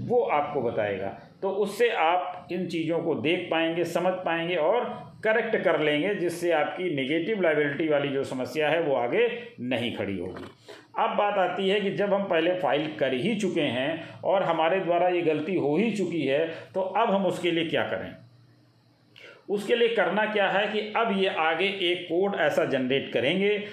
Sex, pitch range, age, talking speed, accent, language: male, 160-195 Hz, 50-69, 185 wpm, native, Hindi